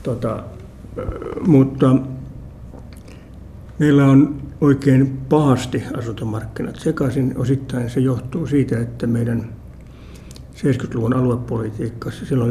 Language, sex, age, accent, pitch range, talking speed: Finnish, male, 60-79, native, 115-135 Hz, 80 wpm